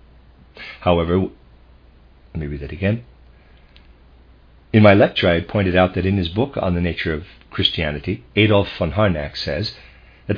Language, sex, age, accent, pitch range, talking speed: English, male, 50-69, American, 70-100 Hz, 155 wpm